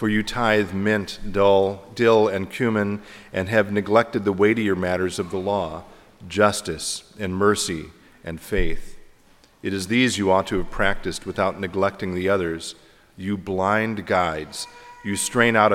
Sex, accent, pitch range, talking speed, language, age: male, American, 95-110 Hz, 150 wpm, English, 40-59